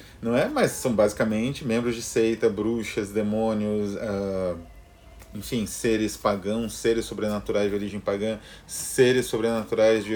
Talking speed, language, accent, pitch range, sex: 130 wpm, Portuguese, Brazilian, 100-130 Hz, male